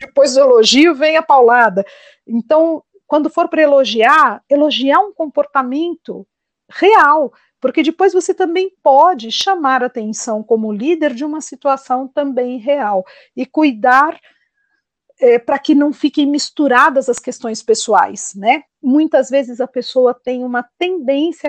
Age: 50-69